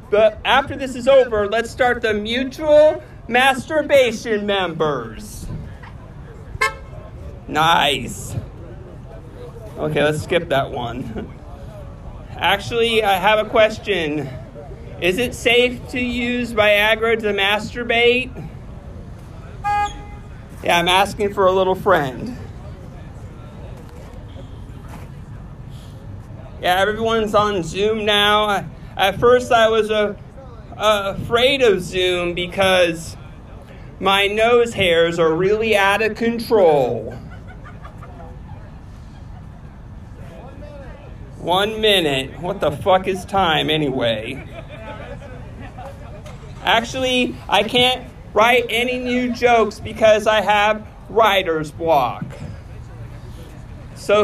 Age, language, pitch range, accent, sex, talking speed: 40-59, English, 150-230 Hz, American, male, 85 wpm